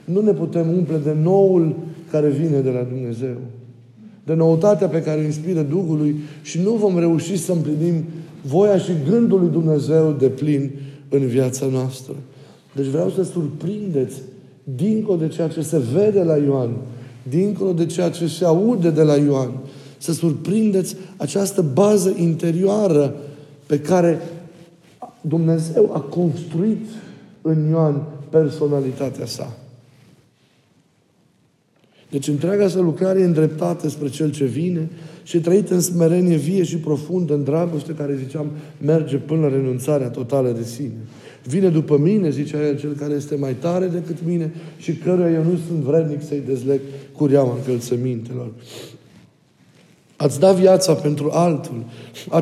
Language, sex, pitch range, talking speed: Romanian, male, 145-175 Hz, 145 wpm